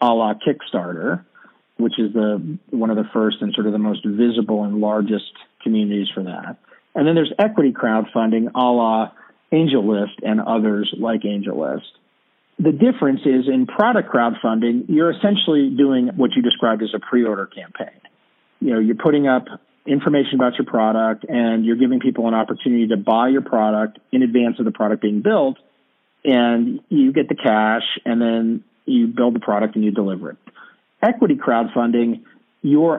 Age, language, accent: 40-59, English, American